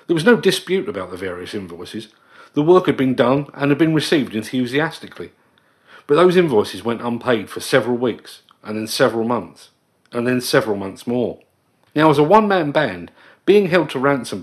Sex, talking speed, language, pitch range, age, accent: male, 185 wpm, English, 115-155 Hz, 40-59, British